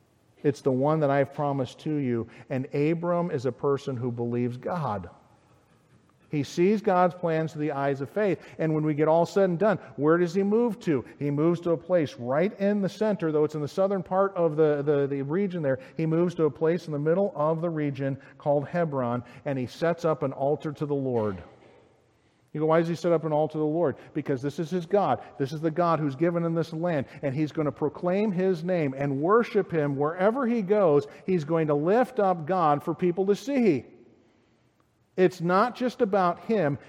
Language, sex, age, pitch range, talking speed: English, male, 50-69, 140-180 Hz, 220 wpm